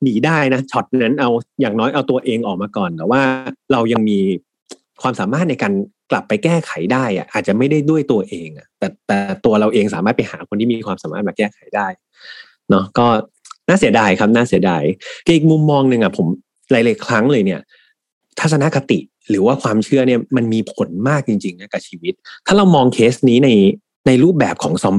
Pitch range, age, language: 110-155 Hz, 30-49, Thai